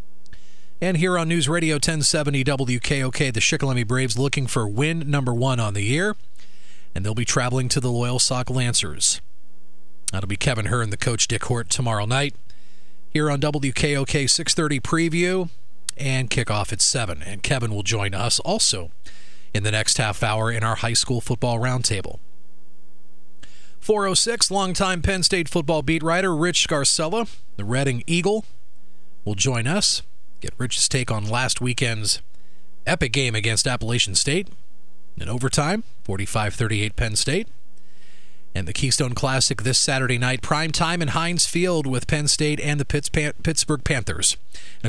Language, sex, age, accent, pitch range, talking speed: English, male, 40-59, American, 105-150 Hz, 150 wpm